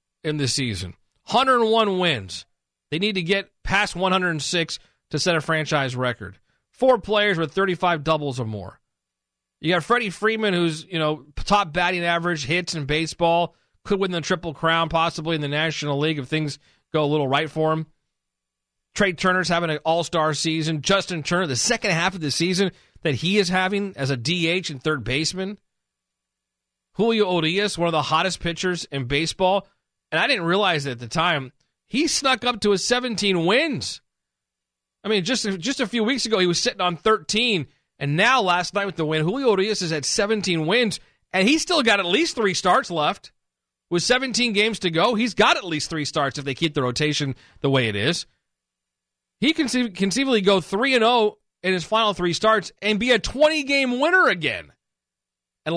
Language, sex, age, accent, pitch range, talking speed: English, male, 40-59, American, 150-205 Hz, 195 wpm